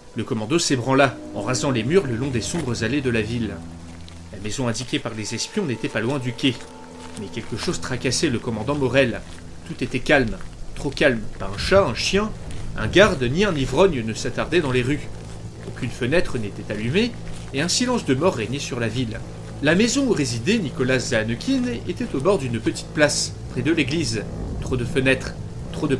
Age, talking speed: 30-49, 200 wpm